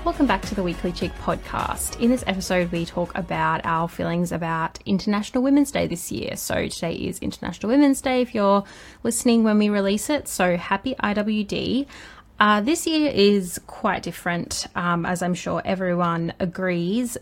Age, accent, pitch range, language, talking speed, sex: 20-39, Australian, 175-210 Hz, English, 170 wpm, female